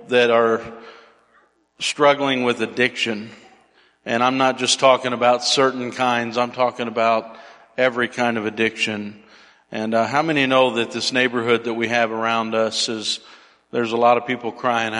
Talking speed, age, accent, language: 160 wpm, 50-69, American, English